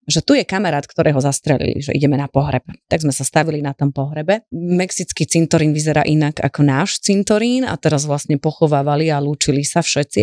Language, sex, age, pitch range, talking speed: Slovak, female, 30-49, 150-200 Hz, 190 wpm